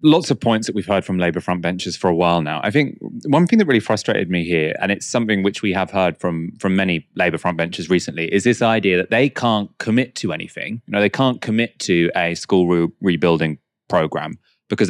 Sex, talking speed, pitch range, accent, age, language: male, 225 wpm, 95-130 Hz, British, 30-49, English